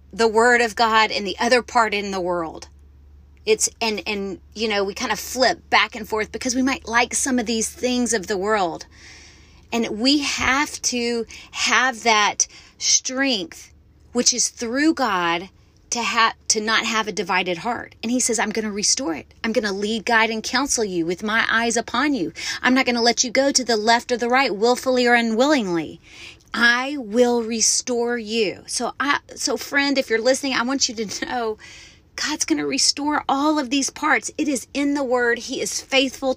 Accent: American